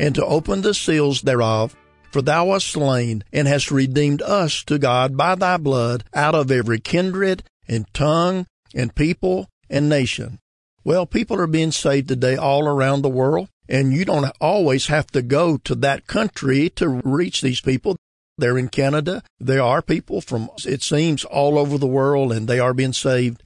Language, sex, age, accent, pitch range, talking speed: English, male, 50-69, American, 125-150 Hz, 180 wpm